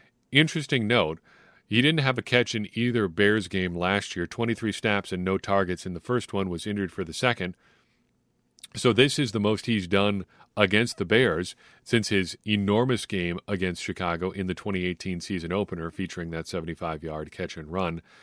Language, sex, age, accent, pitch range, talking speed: English, male, 40-59, American, 90-110 Hz, 180 wpm